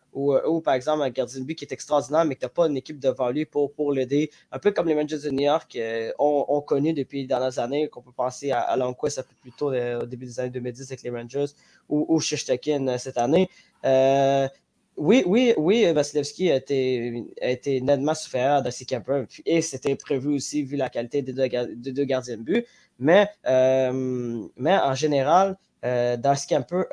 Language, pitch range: French, 130-160 Hz